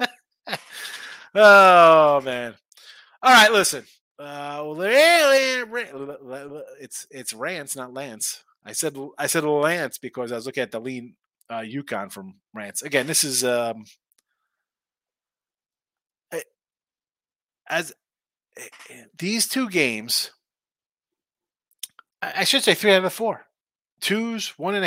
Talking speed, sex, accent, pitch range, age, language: 110 wpm, male, American, 135-195 Hz, 30-49, English